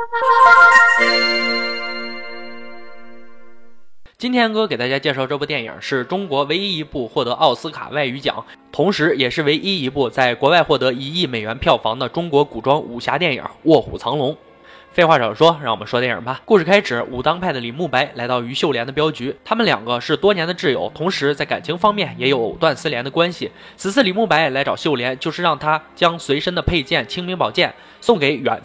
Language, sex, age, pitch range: Chinese, male, 20-39, 130-195 Hz